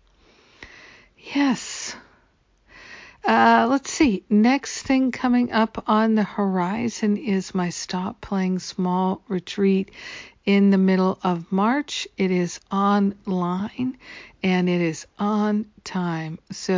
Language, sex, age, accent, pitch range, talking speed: English, female, 60-79, American, 175-210 Hz, 110 wpm